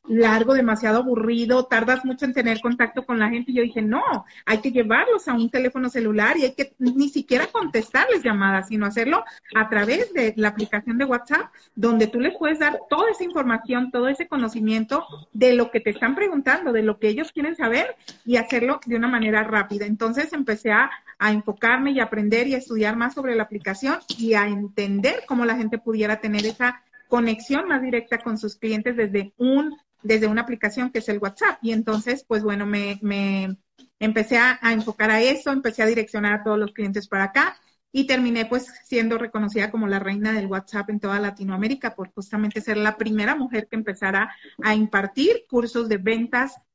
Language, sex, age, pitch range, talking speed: Spanish, female, 40-59, 210-255 Hz, 195 wpm